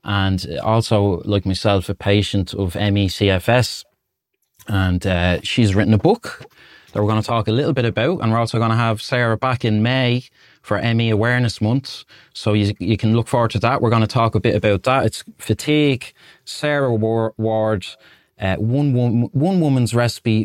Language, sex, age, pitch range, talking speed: English, male, 20-39, 105-130 Hz, 185 wpm